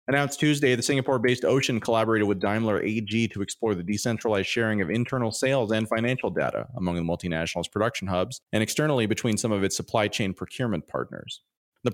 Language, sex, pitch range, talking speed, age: English, male, 100-130 Hz, 180 wpm, 30-49